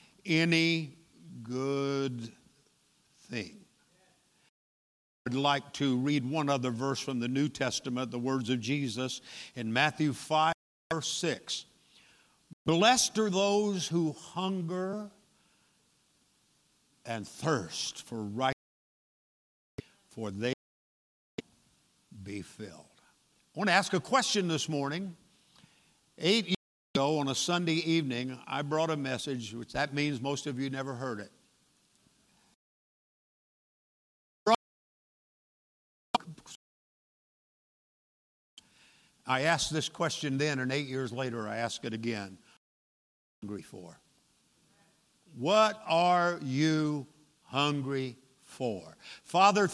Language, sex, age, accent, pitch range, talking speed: English, male, 60-79, American, 125-160 Hz, 105 wpm